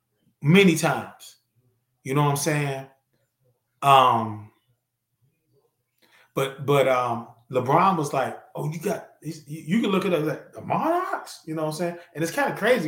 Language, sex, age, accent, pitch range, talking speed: English, male, 20-39, American, 130-175 Hz, 170 wpm